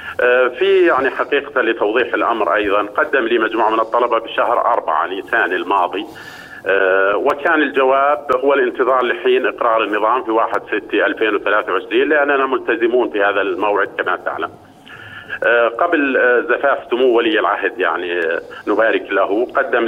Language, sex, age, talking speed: Arabic, male, 50-69, 120 wpm